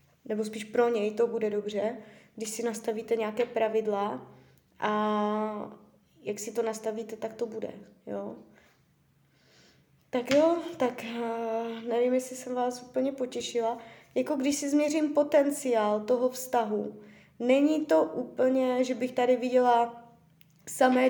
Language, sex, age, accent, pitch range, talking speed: Czech, female, 20-39, native, 215-260 Hz, 125 wpm